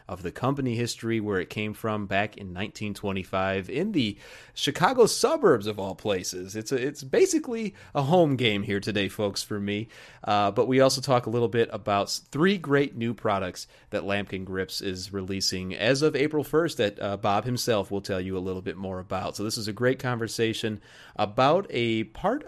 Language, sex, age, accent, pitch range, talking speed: English, male, 30-49, American, 100-135 Hz, 195 wpm